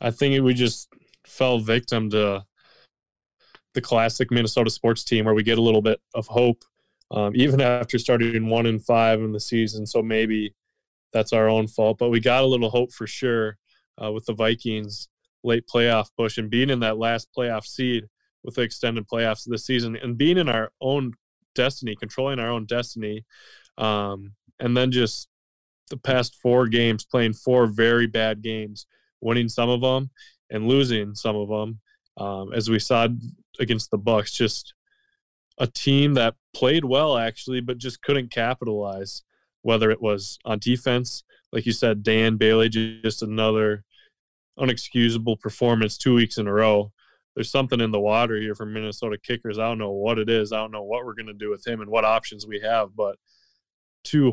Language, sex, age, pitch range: English, male, 20-39, 110-120 Hz